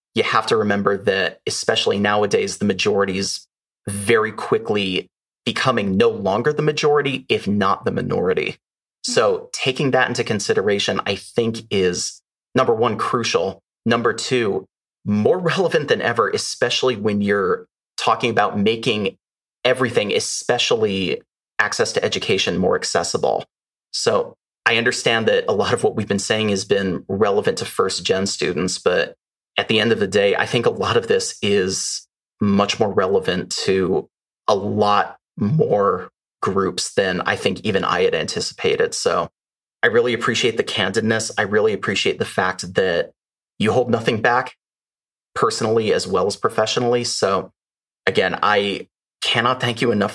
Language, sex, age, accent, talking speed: English, male, 30-49, American, 150 wpm